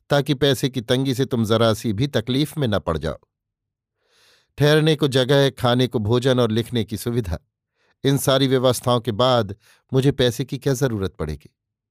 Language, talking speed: Hindi, 170 wpm